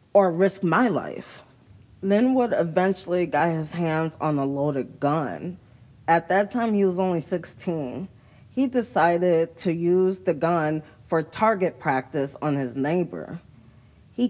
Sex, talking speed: female, 140 wpm